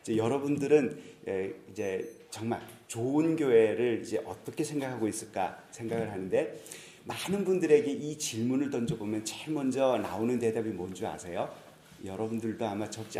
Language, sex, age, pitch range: Korean, male, 40-59, 110-155 Hz